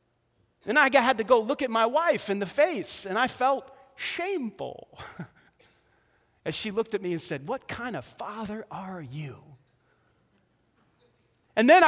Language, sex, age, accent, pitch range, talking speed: English, male, 30-49, American, 210-275 Hz, 155 wpm